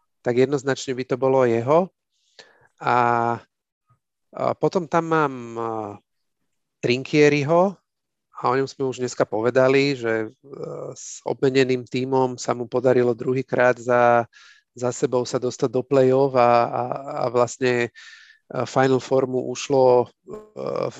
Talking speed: 115 wpm